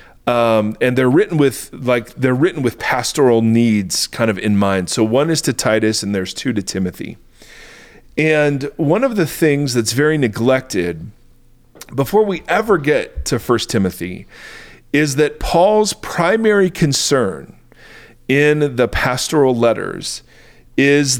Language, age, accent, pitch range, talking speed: English, 40-59, American, 115-150 Hz, 140 wpm